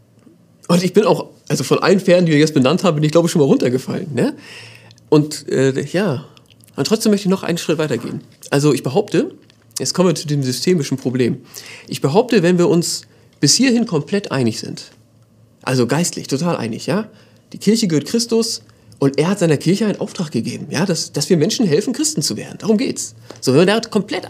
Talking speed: 205 wpm